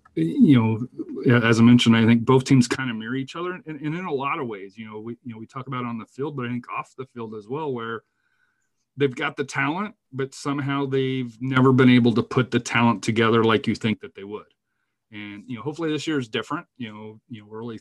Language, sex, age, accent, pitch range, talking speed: English, male, 30-49, American, 115-135 Hz, 260 wpm